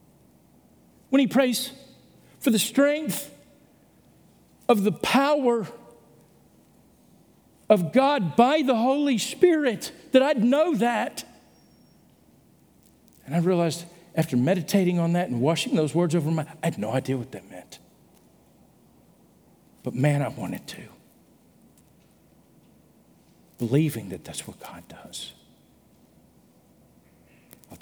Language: English